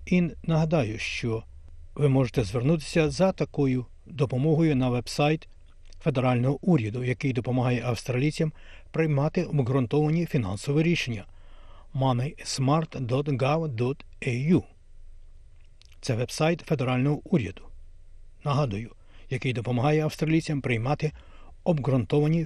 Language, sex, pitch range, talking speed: Ukrainian, male, 105-155 Hz, 85 wpm